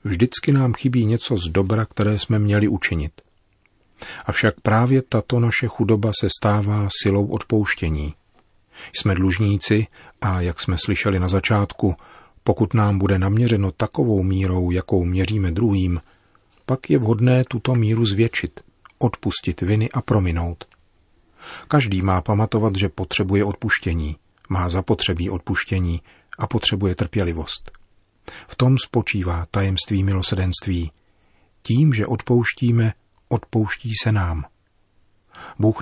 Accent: native